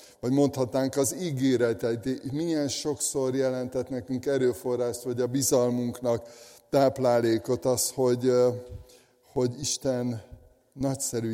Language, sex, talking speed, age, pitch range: Hungarian, male, 95 wpm, 60-79, 110-130 Hz